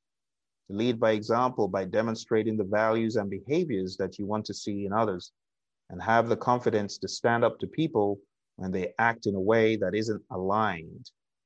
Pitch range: 105-130 Hz